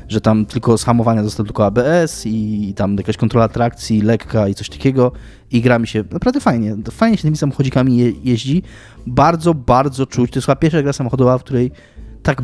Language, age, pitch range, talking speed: Polish, 20-39, 115-140 Hz, 200 wpm